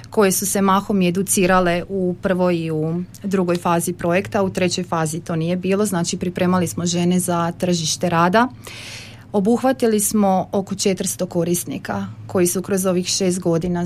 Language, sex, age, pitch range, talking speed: Croatian, female, 30-49, 170-205 Hz, 155 wpm